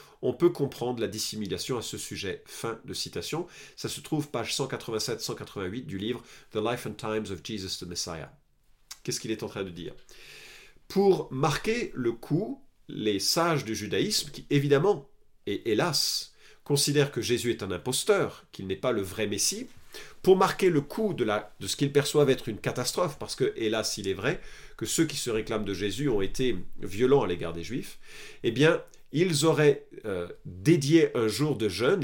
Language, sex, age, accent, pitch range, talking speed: French, male, 40-59, French, 105-155 Hz, 185 wpm